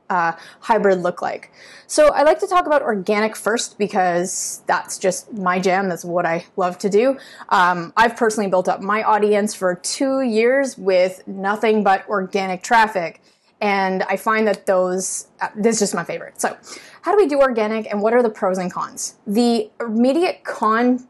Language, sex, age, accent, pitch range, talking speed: English, female, 20-39, American, 195-230 Hz, 180 wpm